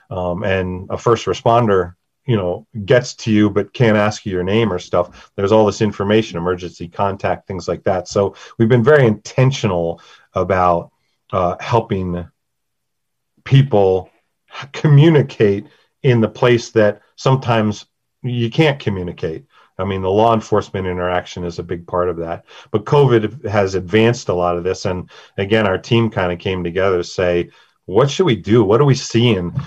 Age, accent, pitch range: 40-59, American, 95-115 Hz